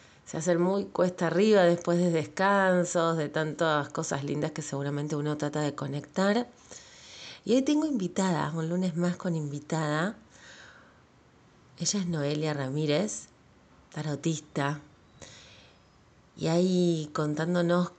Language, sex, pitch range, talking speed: Spanish, female, 150-195 Hz, 115 wpm